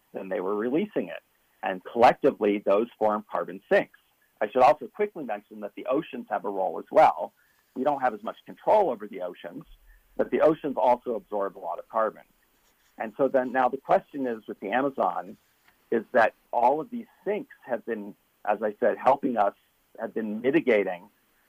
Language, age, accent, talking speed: English, 50-69, American, 190 wpm